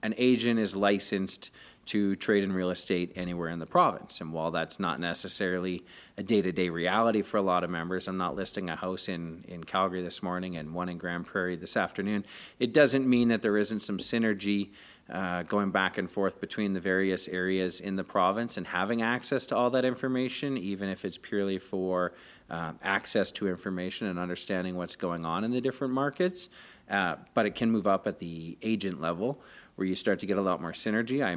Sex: male